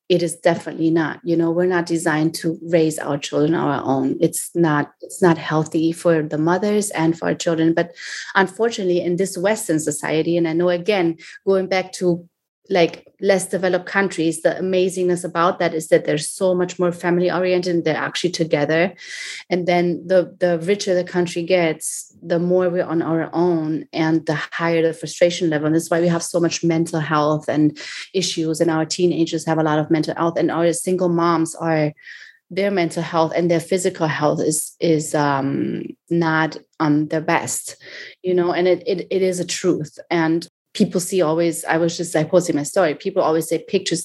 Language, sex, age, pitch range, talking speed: English, female, 30-49, 160-180 Hz, 200 wpm